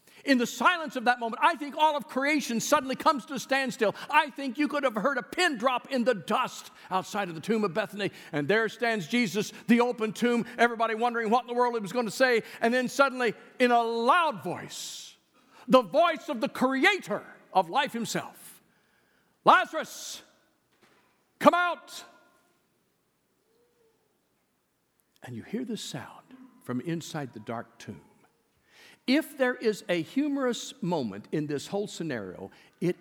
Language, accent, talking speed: English, American, 165 wpm